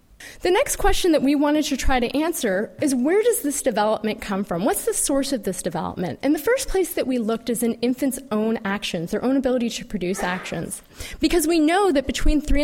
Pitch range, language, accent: 230-300 Hz, English, American